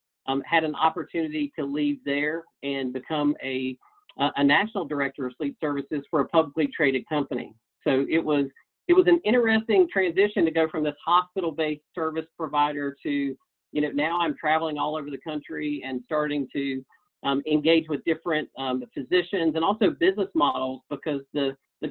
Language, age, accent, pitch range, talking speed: English, 50-69, American, 140-160 Hz, 175 wpm